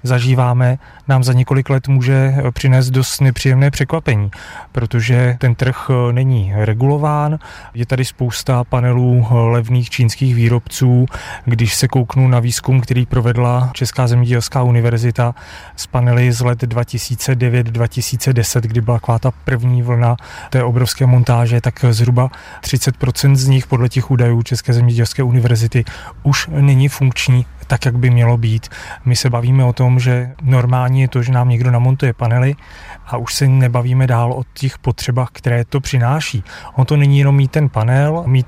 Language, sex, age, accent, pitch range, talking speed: Czech, male, 30-49, native, 120-130 Hz, 150 wpm